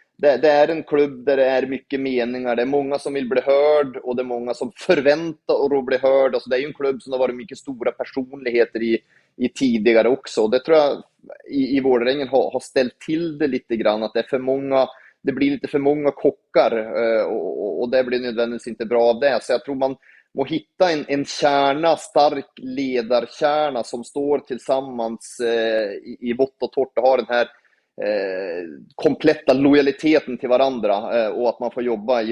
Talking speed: 205 wpm